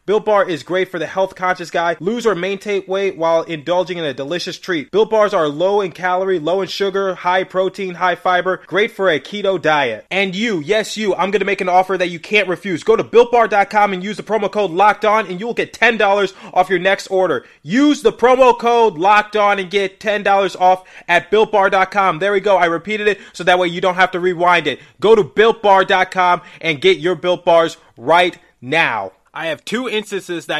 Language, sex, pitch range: English, male, 170-200 Hz